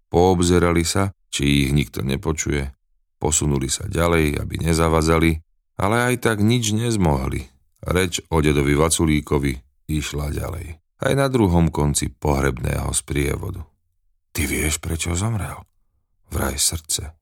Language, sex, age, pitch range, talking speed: Slovak, male, 40-59, 70-85 Hz, 120 wpm